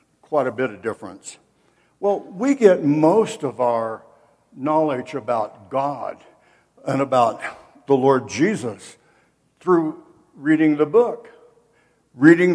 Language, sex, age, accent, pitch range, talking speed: English, male, 60-79, American, 145-195 Hz, 115 wpm